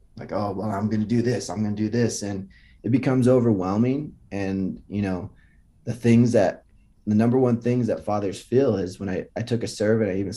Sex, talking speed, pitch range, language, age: male, 225 wpm, 95-115 Hz, English, 20-39